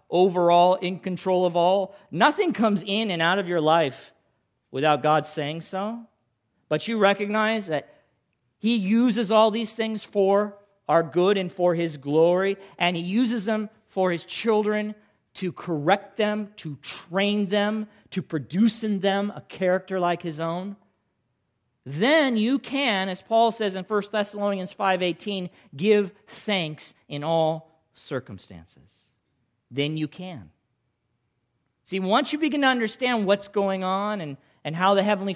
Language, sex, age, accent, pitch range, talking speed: English, male, 40-59, American, 145-205 Hz, 150 wpm